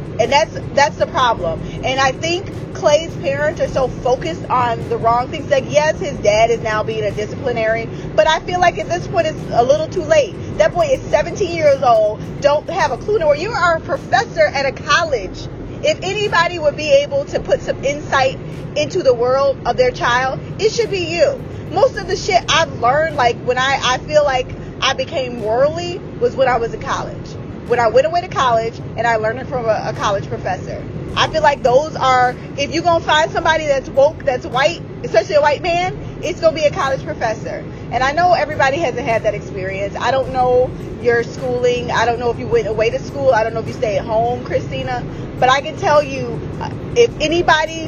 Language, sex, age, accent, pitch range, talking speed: English, female, 20-39, American, 235-335 Hz, 220 wpm